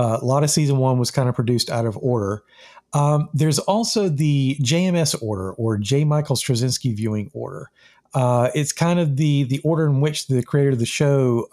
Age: 50-69